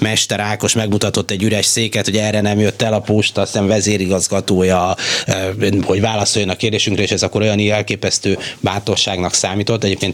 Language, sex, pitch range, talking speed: Hungarian, male, 95-115 Hz, 155 wpm